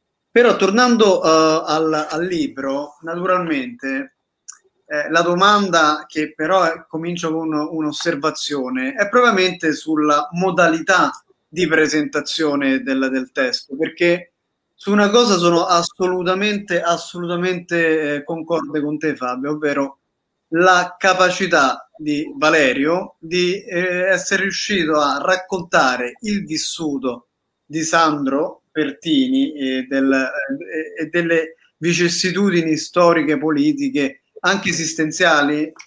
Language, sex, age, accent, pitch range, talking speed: Italian, male, 30-49, native, 150-185 Hz, 105 wpm